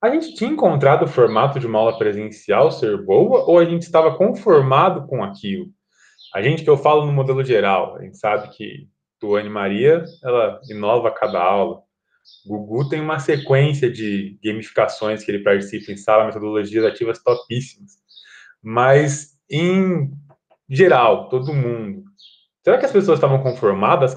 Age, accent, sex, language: 20-39, Brazilian, male, Portuguese